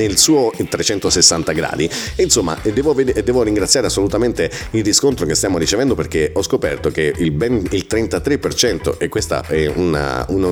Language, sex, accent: Italian, male, native